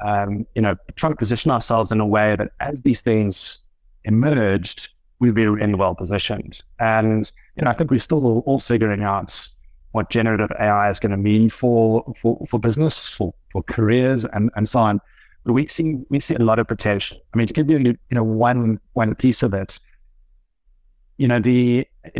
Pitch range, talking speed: 100-125 Hz, 200 wpm